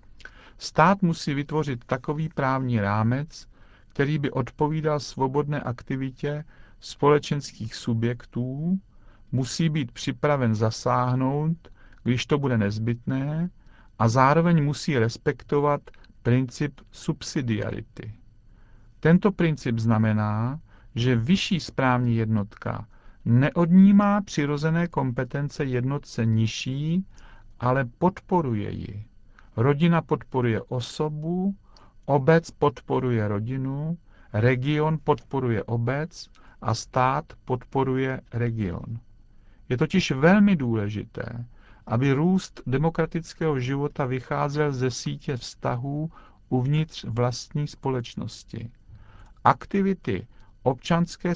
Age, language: 50-69, Czech